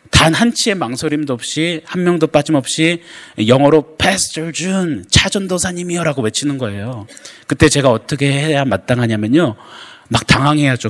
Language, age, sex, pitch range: Korean, 30-49, male, 110-150 Hz